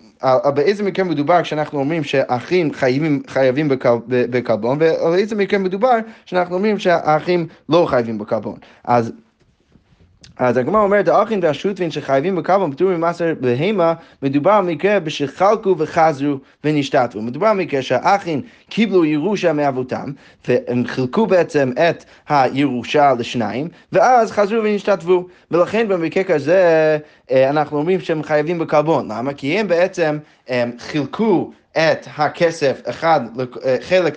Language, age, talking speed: Hebrew, 20-39, 115 wpm